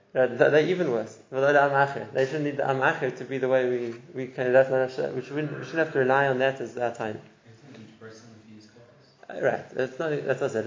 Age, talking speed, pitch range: 20-39, 185 wpm, 125-150 Hz